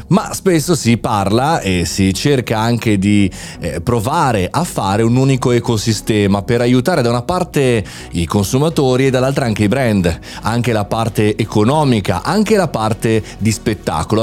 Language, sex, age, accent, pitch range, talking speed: Italian, male, 30-49, native, 100-135 Hz, 155 wpm